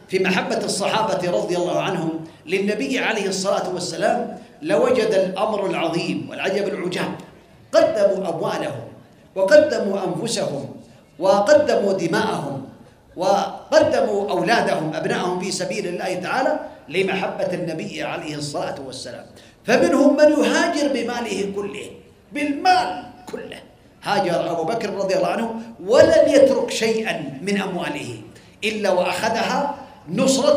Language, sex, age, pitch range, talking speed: Arabic, male, 40-59, 185-265 Hz, 105 wpm